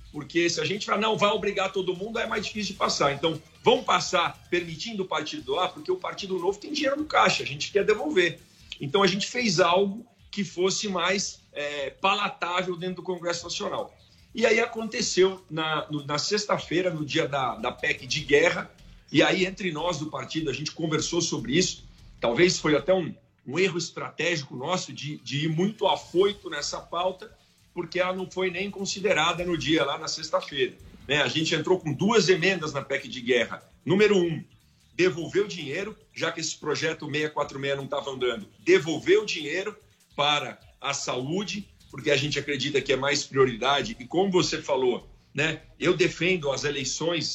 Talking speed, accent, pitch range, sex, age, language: 180 wpm, Brazilian, 145-195 Hz, male, 50-69, Portuguese